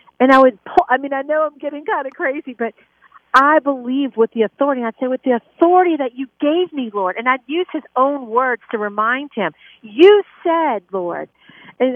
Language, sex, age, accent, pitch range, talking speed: English, female, 50-69, American, 220-275 Hz, 210 wpm